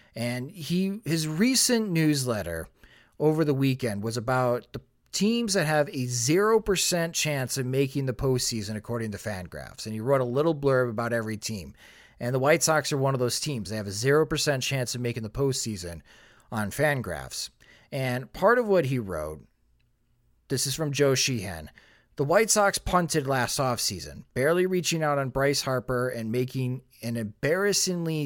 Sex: male